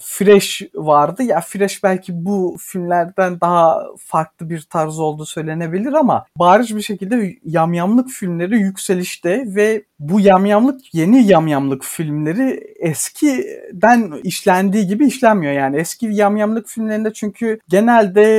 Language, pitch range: Turkish, 160-215 Hz